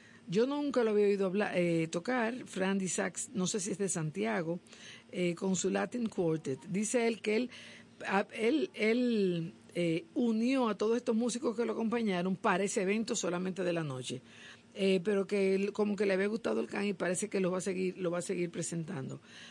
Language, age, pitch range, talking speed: Spanish, 50-69, 170-215 Hz, 205 wpm